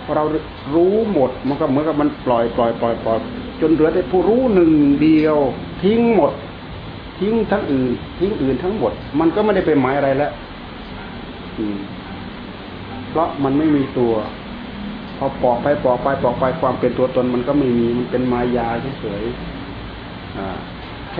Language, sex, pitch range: Thai, male, 115-150 Hz